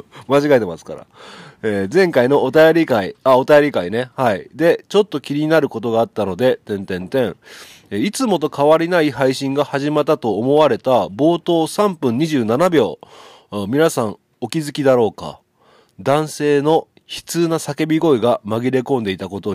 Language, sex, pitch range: Japanese, male, 110-155 Hz